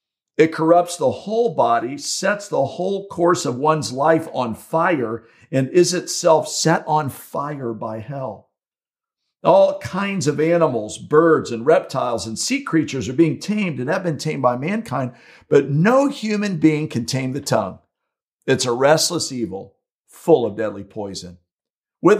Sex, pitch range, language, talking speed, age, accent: male, 130-175 Hz, English, 155 wpm, 50-69, American